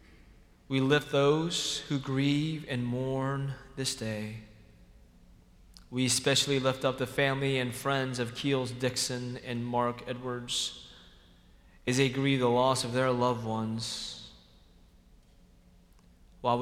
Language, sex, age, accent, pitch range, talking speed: English, male, 20-39, American, 110-130 Hz, 120 wpm